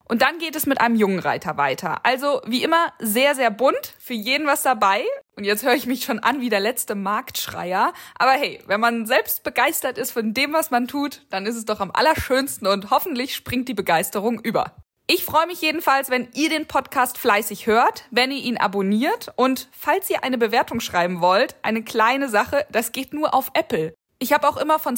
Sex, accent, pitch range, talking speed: female, German, 220-275 Hz, 210 wpm